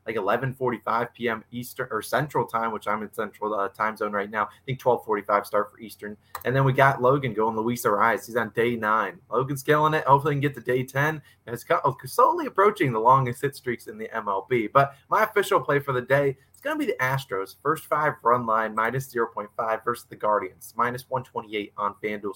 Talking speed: 210 wpm